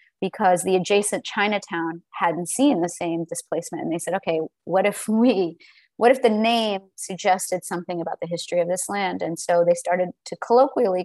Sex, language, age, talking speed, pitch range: female, English, 30-49, 185 wpm, 180-220 Hz